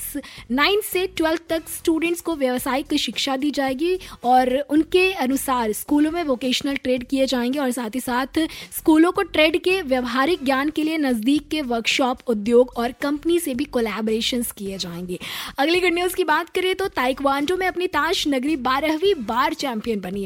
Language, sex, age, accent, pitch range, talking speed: Hindi, female, 20-39, native, 240-300 Hz, 170 wpm